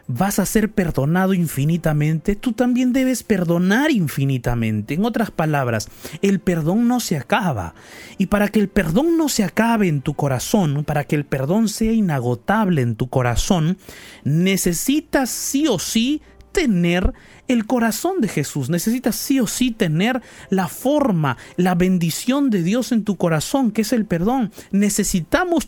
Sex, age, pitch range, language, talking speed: male, 30-49, 130-205 Hz, Spanish, 155 wpm